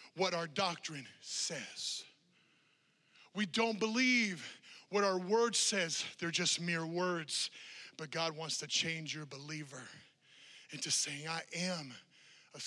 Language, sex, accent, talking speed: English, male, American, 130 wpm